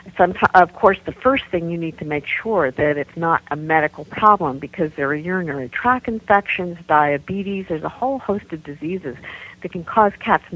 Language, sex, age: English, female, 50-69